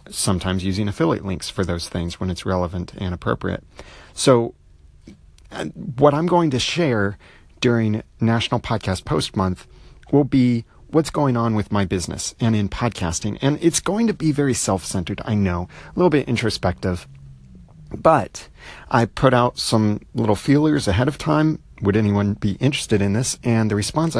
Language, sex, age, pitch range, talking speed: English, male, 40-59, 95-120 Hz, 165 wpm